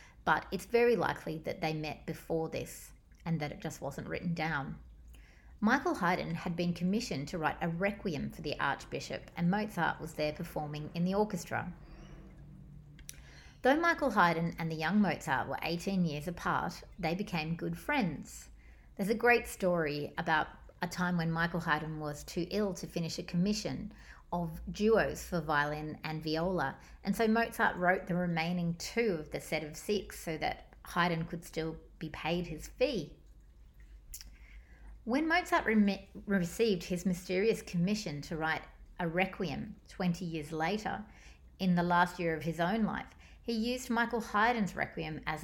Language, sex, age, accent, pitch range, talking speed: English, female, 30-49, Australian, 155-195 Hz, 160 wpm